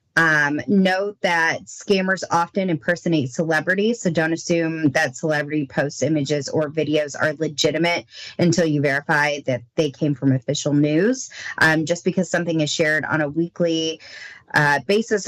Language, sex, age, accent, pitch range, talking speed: English, female, 20-39, American, 155-185 Hz, 150 wpm